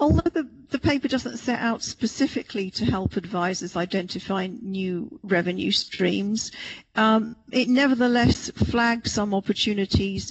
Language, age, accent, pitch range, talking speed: English, 50-69, British, 200-235 Hz, 120 wpm